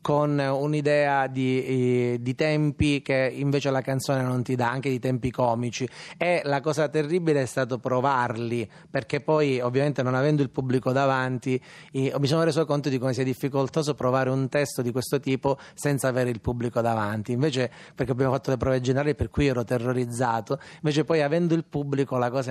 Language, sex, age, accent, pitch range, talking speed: Italian, male, 30-49, native, 125-145 Hz, 180 wpm